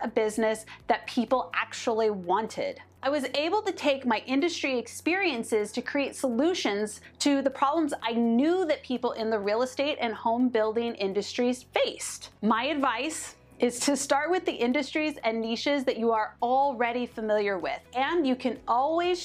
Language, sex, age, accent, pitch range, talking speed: English, female, 30-49, American, 225-285 Hz, 165 wpm